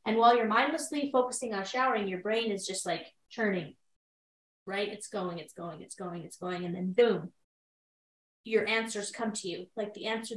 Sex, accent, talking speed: female, American, 190 wpm